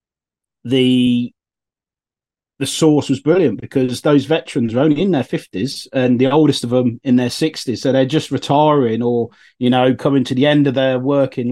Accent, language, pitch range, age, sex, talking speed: British, English, 125-155 Hz, 30-49, male, 180 wpm